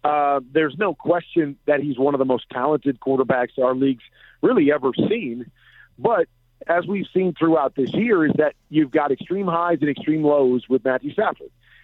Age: 40-59